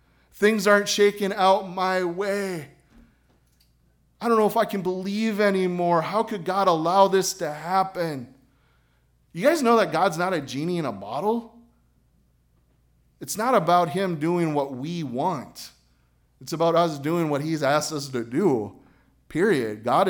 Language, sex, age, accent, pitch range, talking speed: English, male, 30-49, American, 110-170 Hz, 155 wpm